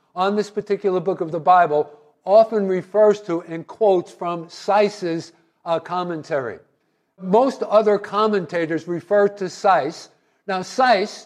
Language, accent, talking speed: English, American, 130 wpm